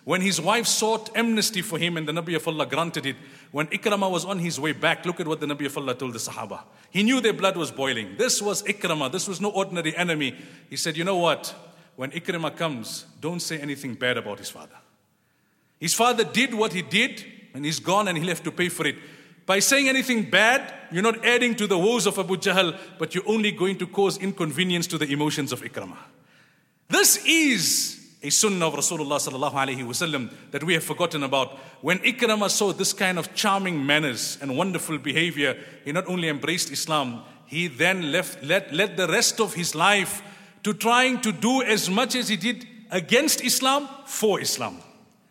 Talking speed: 200 wpm